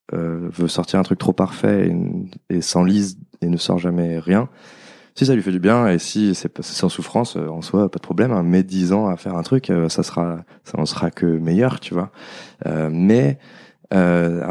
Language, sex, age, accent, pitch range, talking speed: French, male, 20-39, French, 85-100 Hz, 225 wpm